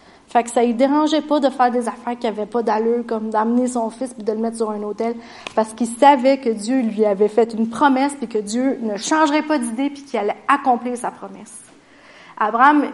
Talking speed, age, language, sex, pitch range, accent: 230 wpm, 30-49, French, female, 230-285 Hz, Canadian